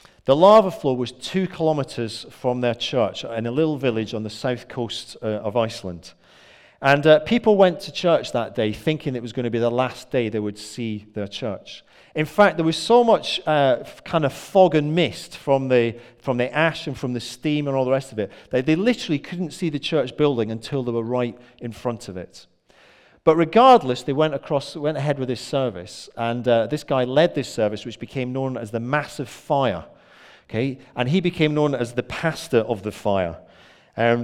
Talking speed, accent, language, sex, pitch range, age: 210 wpm, British, English, male, 115-150 Hz, 40-59